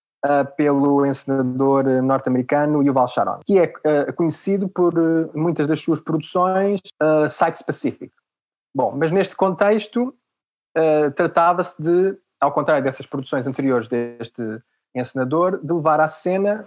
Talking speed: 130 wpm